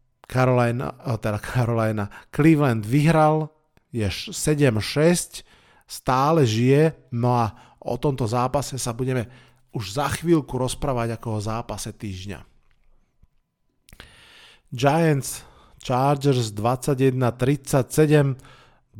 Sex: male